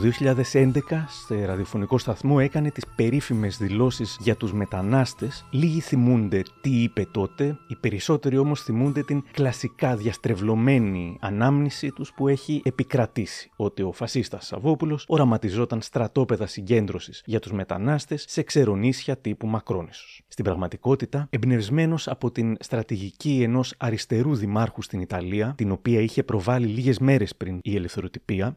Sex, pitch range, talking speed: male, 105-130 Hz, 130 wpm